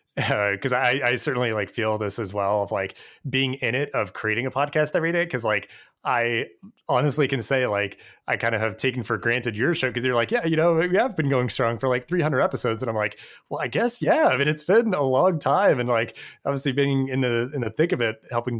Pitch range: 105-140 Hz